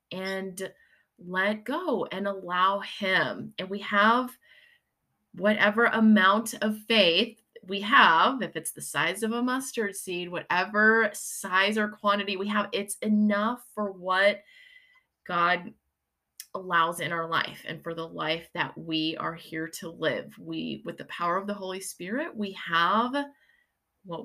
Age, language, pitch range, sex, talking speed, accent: 20-39, English, 170-220 Hz, female, 145 wpm, American